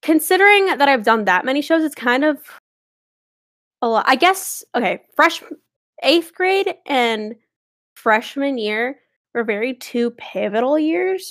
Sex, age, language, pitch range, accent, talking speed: female, 10-29, English, 210-280 Hz, American, 140 wpm